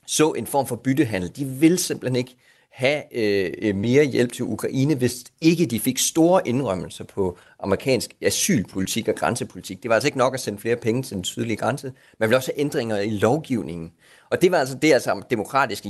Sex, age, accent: male, 30-49, native